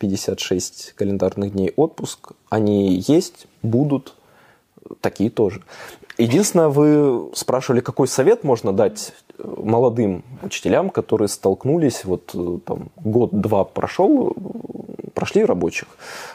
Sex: male